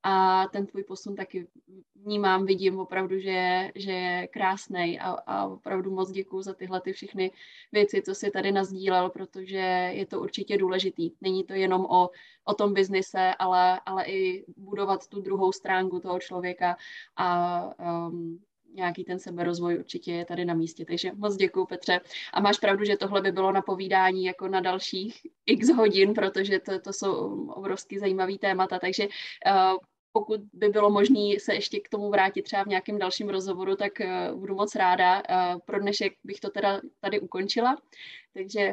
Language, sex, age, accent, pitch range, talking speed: Czech, female, 20-39, native, 185-210 Hz, 170 wpm